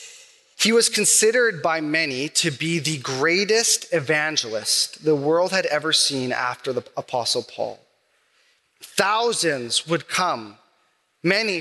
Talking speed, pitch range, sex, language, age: 120 wpm, 145-200 Hz, male, English, 30-49